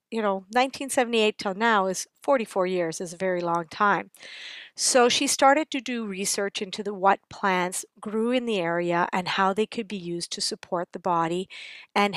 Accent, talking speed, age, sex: American, 190 wpm, 40-59, female